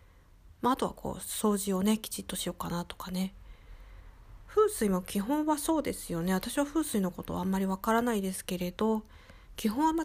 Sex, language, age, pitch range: female, Japanese, 40-59, 185-235 Hz